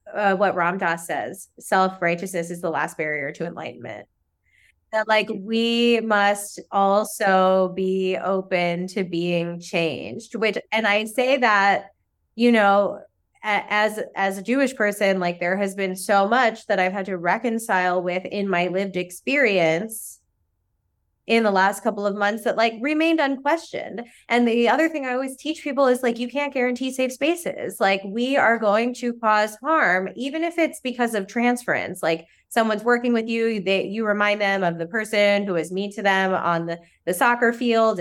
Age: 20-39